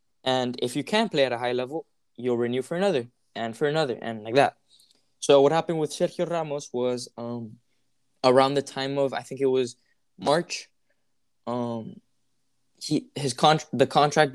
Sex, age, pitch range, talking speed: male, 10-29, 120-145 Hz, 175 wpm